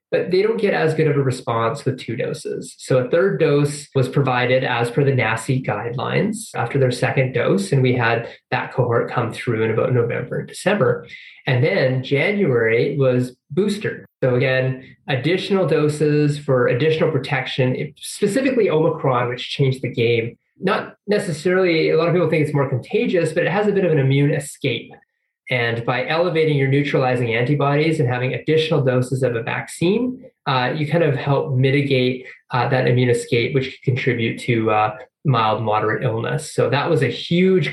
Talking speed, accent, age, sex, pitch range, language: 175 wpm, American, 20-39, male, 125-155 Hz, English